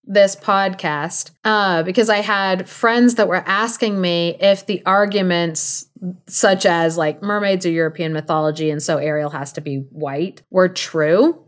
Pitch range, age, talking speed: 160-210 Hz, 30-49, 155 wpm